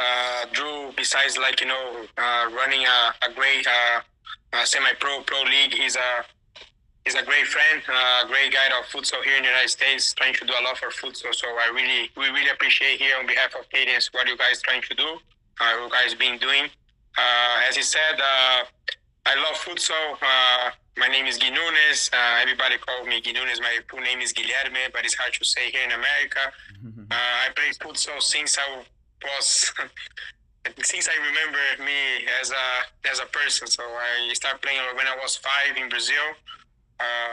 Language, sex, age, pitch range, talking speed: English, male, 20-39, 120-135 Hz, 195 wpm